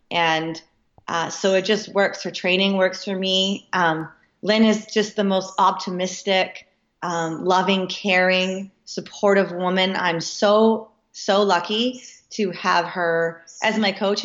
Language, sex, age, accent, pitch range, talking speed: English, female, 20-39, American, 180-215 Hz, 140 wpm